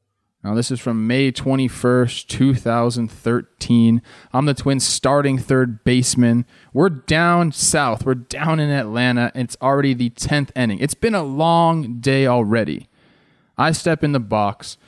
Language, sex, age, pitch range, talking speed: English, male, 20-39, 120-155 Hz, 145 wpm